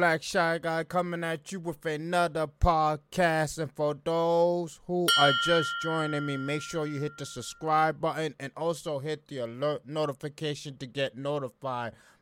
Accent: American